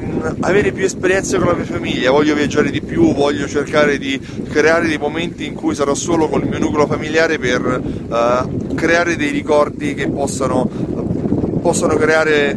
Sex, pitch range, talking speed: male, 125-160 Hz, 160 wpm